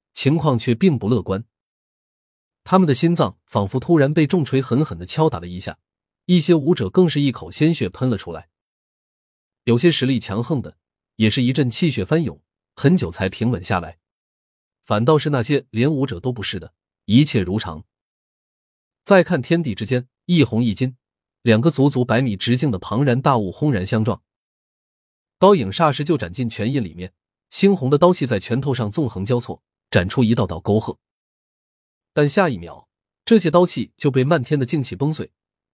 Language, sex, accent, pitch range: Chinese, male, native, 105-155 Hz